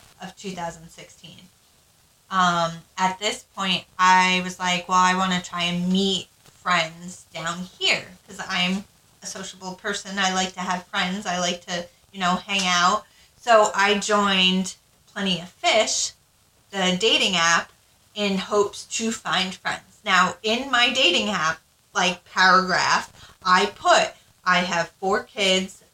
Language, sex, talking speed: English, female, 145 wpm